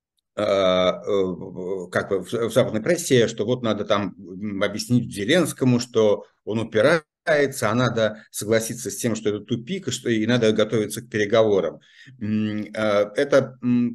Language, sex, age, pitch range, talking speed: Russian, male, 50-69, 100-125 Hz, 115 wpm